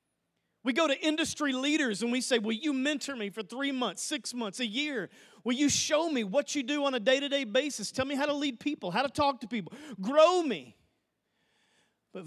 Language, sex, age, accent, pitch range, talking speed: English, male, 40-59, American, 195-280 Hz, 215 wpm